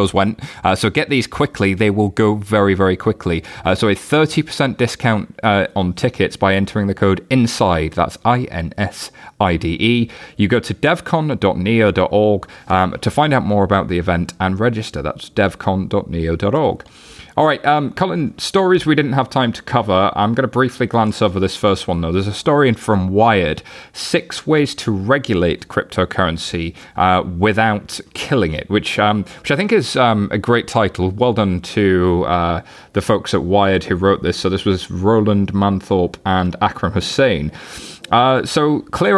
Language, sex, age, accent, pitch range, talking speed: English, male, 30-49, British, 90-115 Hz, 170 wpm